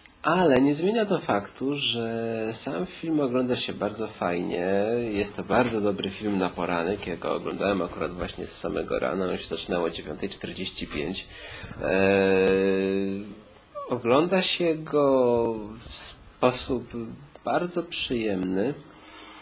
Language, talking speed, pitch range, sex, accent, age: Polish, 115 wpm, 95-135 Hz, male, native, 30-49